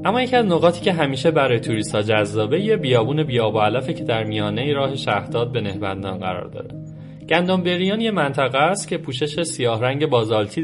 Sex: male